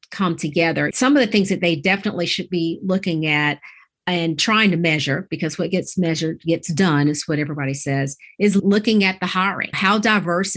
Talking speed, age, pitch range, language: 195 wpm, 40-59, 155-190 Hz, English